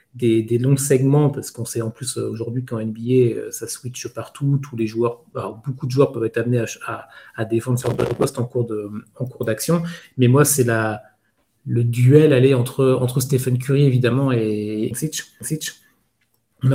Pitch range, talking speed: 120-145 Hz, 185 wpm